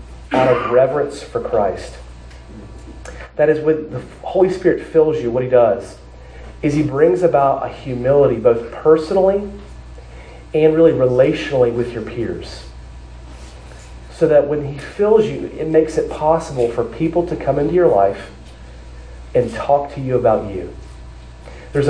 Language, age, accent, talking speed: English, 30-49, American, 150 wpm